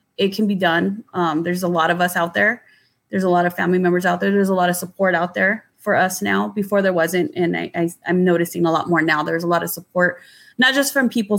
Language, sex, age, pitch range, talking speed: English, female, 20-39, 170-185 Hz, 260 wpm